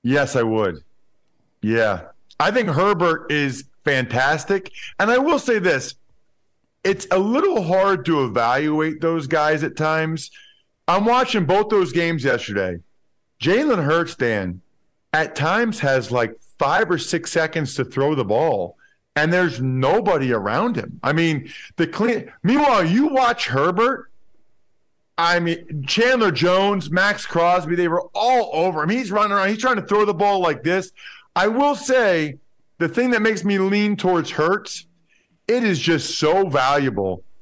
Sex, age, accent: male, 40-59, American